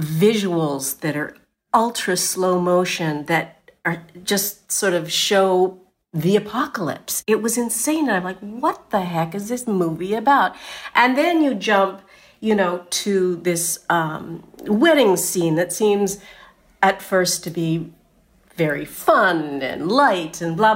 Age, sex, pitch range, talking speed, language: 50-69, female, 170-220 Hz, 145 wpm, English